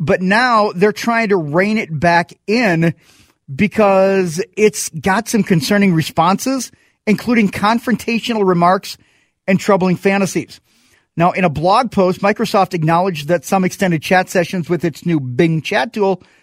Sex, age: male, 40-59